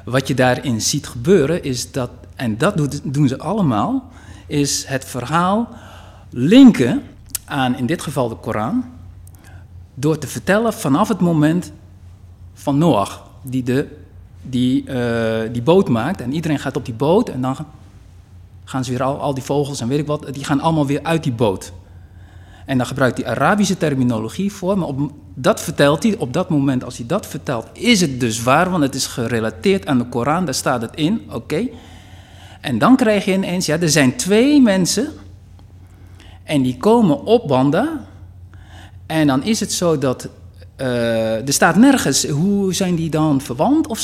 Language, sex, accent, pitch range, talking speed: Dutch, male, Dutch, 100-160 Hz, 175 wpm